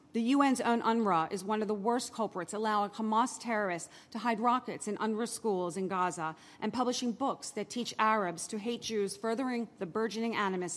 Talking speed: 190 wpm